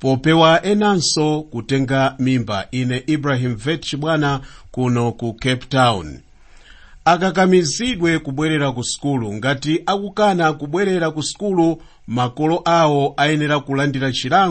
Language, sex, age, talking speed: English, male, 50-69, 105 wpm